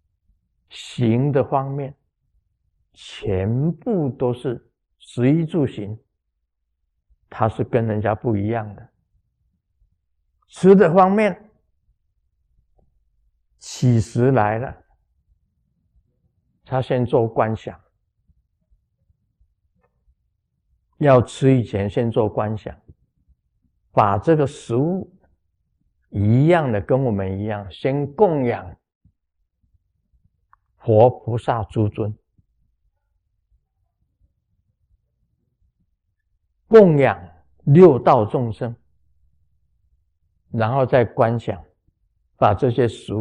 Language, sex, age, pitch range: Chinese, male, 50-69, 85-130 Hz